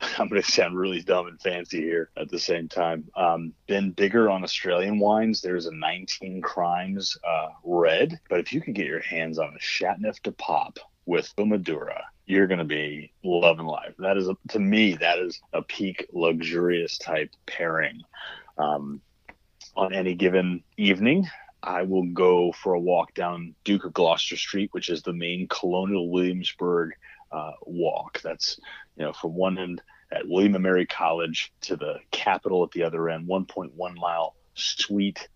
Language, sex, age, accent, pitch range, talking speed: English, male, 30-49, American, 85-95 Hz, 175 wpm